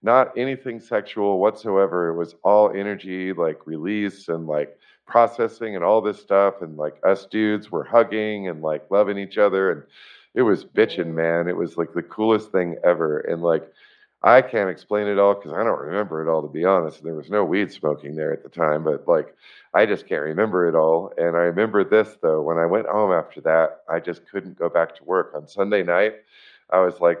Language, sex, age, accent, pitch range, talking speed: English, male, 50-69, American, 80-105 Hz, 215 wpm